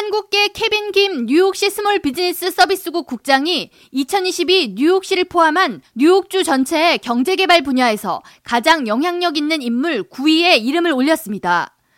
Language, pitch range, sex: Korean, 265-365 Hz, female